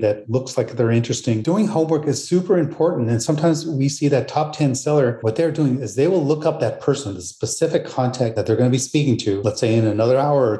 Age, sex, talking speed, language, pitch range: 30-49, male, 245 wpm, English, 115-145 Hz